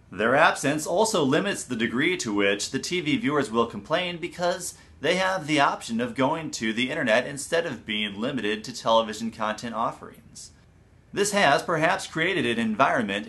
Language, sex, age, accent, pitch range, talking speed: English, male, 30-49, American, 115-165 Hz, 165 wpm